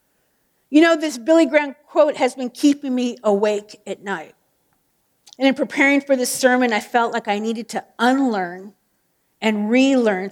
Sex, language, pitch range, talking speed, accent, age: female, English, 210-270 Hz, 165 wpm, American, 40-59